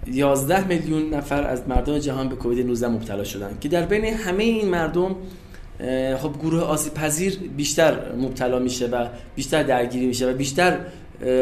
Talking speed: 160 wpm